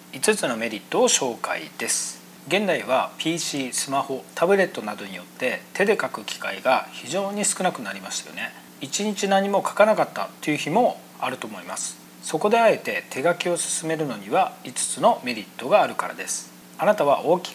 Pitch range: 125-190 Hz